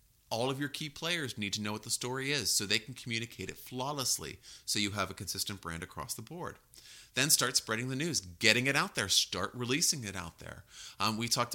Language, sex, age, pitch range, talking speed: English, male, 30-49, 100-130 Hz, 230 wpm